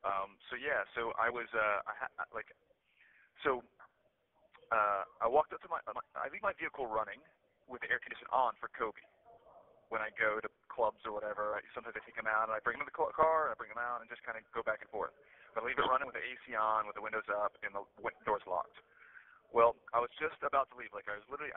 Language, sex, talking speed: English, male, 250 wpm